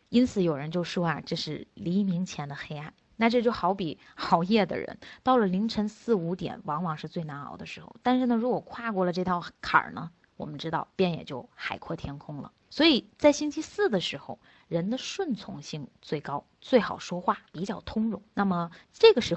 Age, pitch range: 20-39, 180-245 Hz